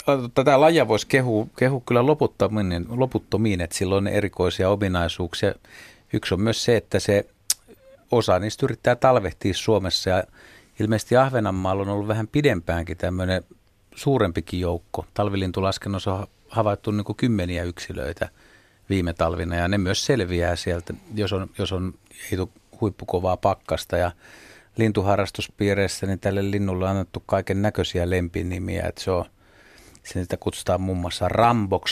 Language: Finnish